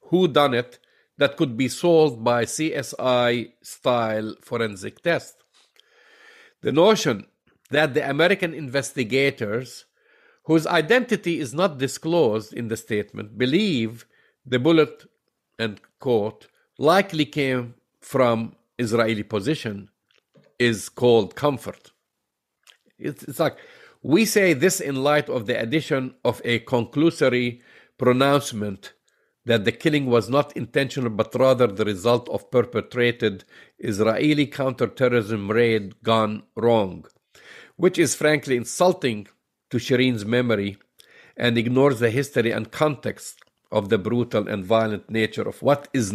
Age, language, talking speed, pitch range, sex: 50-69, English, 120 wpm, 115-145 Hz, male